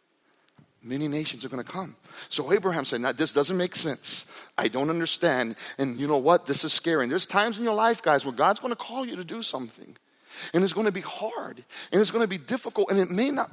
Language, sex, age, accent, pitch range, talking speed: English, male, 40-59, American, 155-205 Hz, 245 wpm